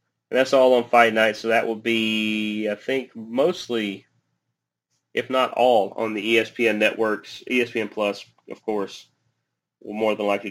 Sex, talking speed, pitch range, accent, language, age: male, 160 wpm, 105-125 Hz, American, English, 30-49